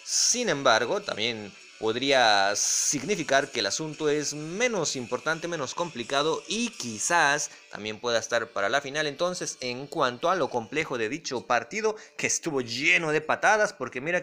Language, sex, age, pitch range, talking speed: English, male, 30-49, 135-180 Hz, 155 wpm